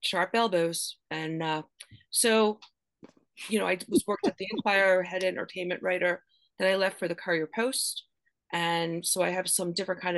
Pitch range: 155-185 Hz